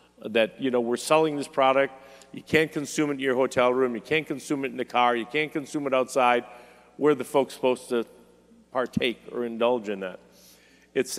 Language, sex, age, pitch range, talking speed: English, male, 50-69, 125-150 Hz, 205 wpm